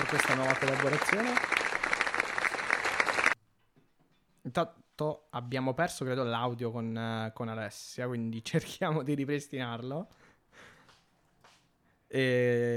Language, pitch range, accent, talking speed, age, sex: Italian, 125-145 Hz, native, 85 wpm, 20-39, male